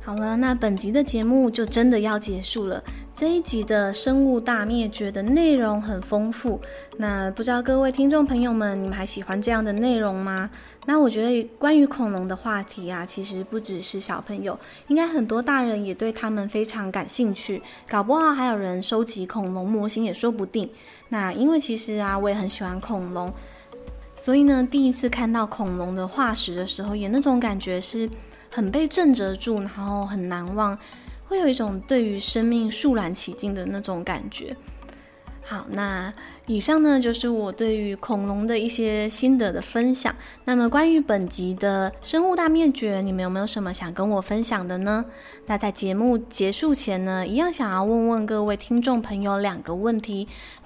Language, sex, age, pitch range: Chinese, female, 20-39, 195-245 Hz